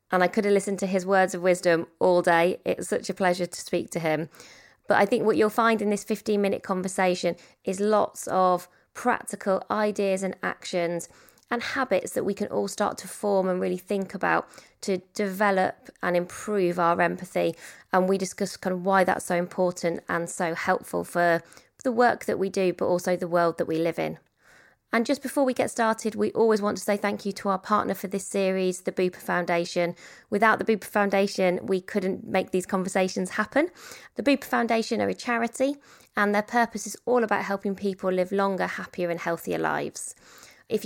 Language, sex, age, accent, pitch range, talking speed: English, female, 20-39, British, 180-215 Hz, 200 wpm